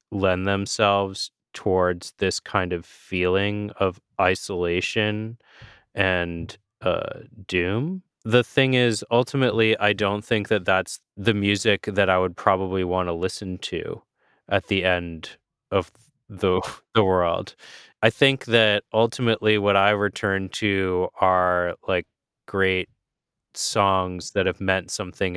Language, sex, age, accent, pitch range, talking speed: English, male, 30-49, American, 90-105 Hz, 130 wpm